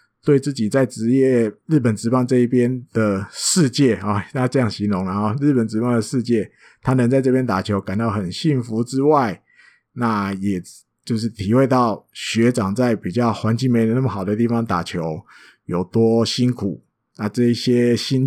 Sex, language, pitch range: male, Chinese, 105-145 Hz